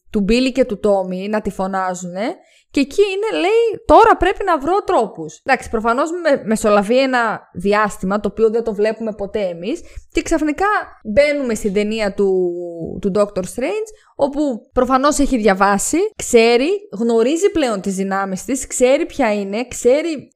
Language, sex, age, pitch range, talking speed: Greek, female, 20-39, 205-295 Hz, 160 wpm